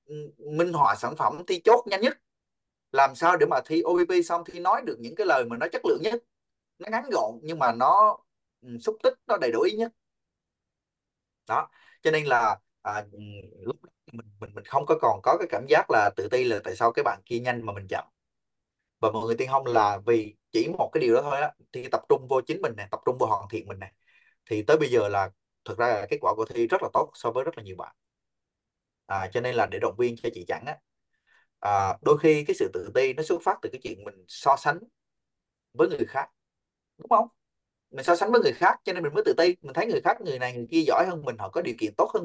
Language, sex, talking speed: Vietnamese, male, 250 wpm